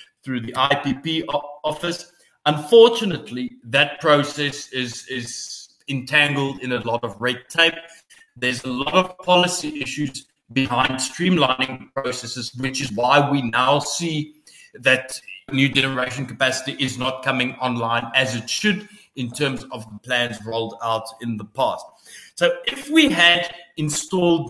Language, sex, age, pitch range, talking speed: English, male, 20-39, 125-155 Hz, 135 wpm